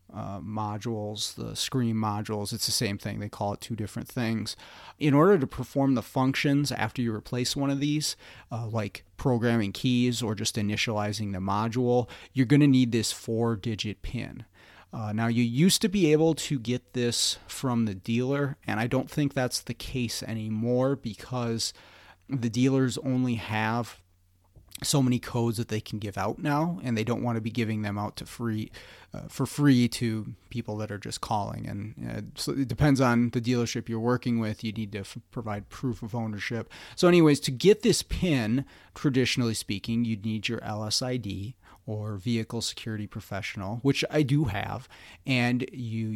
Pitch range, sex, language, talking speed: 105-130 Hz, male, English, 180 wpm